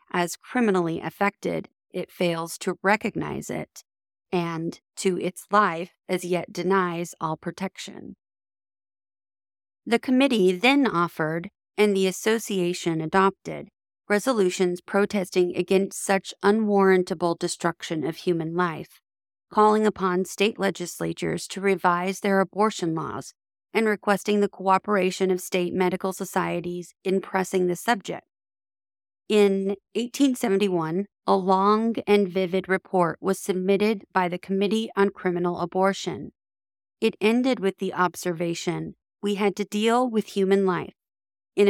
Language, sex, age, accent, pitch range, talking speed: English, female, 30-49, American, 170-200 Hz, 120 wpm